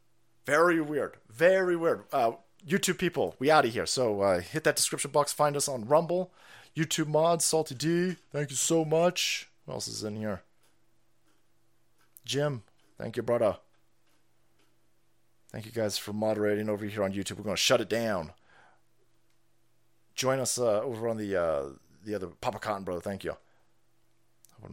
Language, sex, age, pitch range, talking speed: English, male, 30-49, 110-165 Hz, 165 wpm